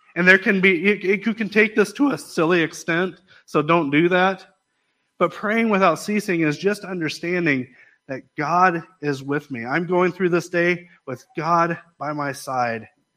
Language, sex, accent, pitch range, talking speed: English, male, American, 155-195 Hz, 175 wpm